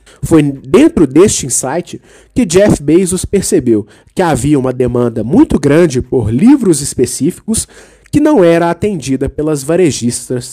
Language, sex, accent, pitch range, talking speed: Portuguese, male, Brazilian, 130-215 Hz, 130 wpm